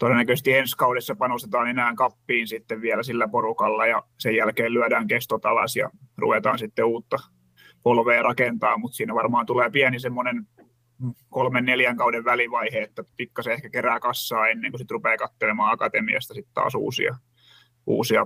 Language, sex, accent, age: Finnish, male, native, 30-49